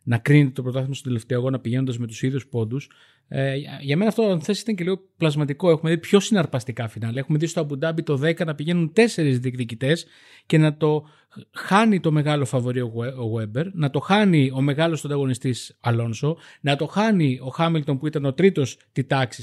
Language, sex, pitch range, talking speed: Greek, male, 130-170 Hz, 200 wpm